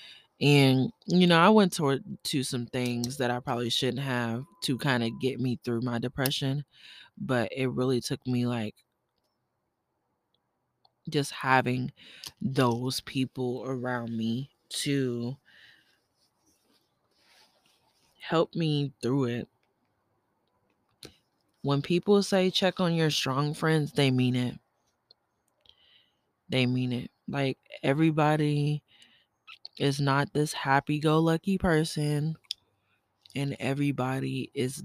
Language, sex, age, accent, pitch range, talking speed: English, female, 20-39, American, 125-150 Hz, 110 wpm